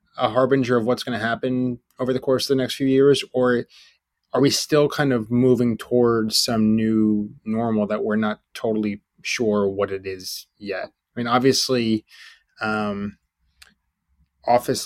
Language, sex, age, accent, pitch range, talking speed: English, male, 20-39, American, 105-125 Hz, 160 wpm